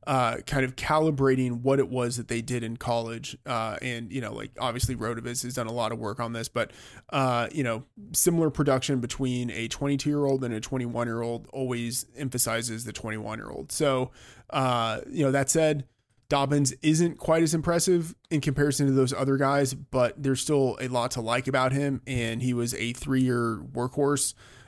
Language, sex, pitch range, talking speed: English, male, 115-135 Hz, 180 wpm